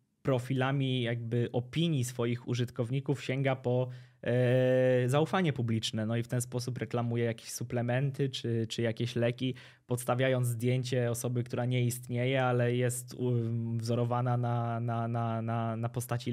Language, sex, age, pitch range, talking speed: Polish, male, 20-39, 120-130 Hz, 140 wpm